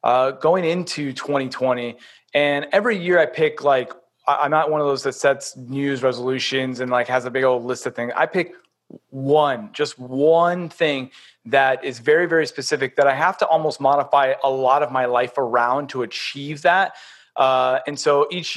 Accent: American